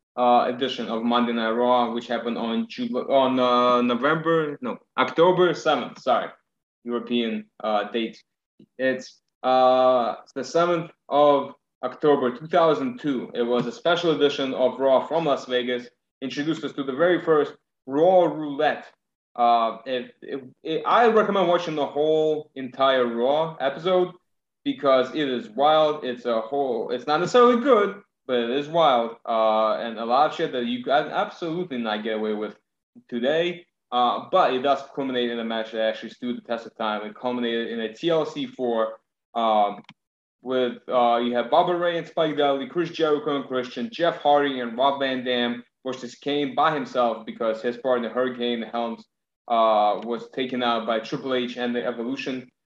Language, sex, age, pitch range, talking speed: English, male, 20-39, 120-155 Hz, 170 wpm